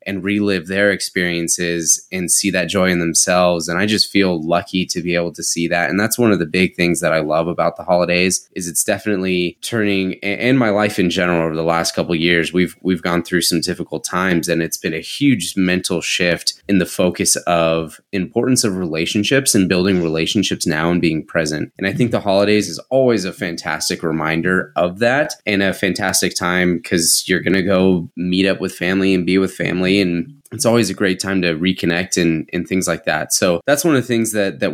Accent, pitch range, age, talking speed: American, 90-105 Hz, 20-39, 220 wpm